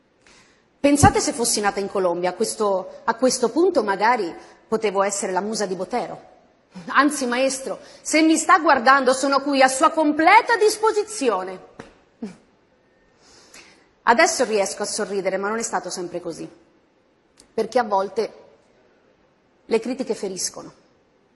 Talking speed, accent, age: 125 wpm, native, 30-49